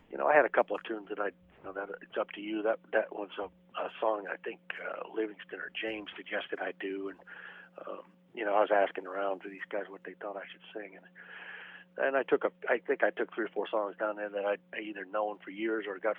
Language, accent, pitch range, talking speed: English, American, 100-120 Hz, 265 wpm